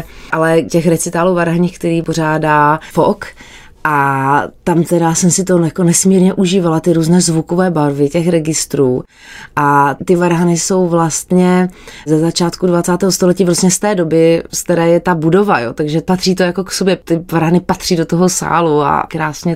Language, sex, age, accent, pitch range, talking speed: Czech, female, 20-39, native, 155-180 Hz, 170 wpm